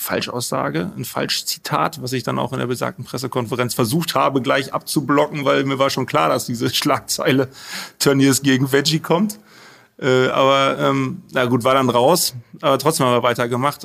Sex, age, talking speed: male, 30-49, 180 wpm